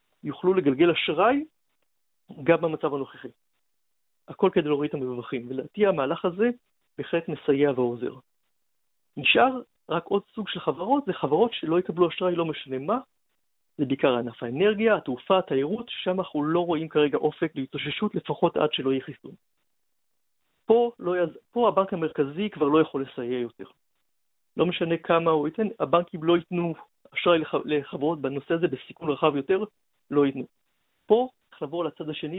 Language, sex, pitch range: Hebrew, male, 140-185 Hz